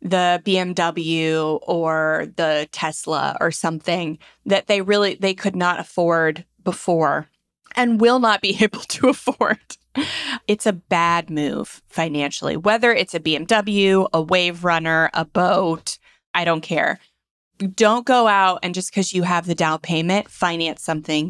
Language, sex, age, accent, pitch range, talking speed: English, female, 20-39, American, 160-205 Hz, 145 wpm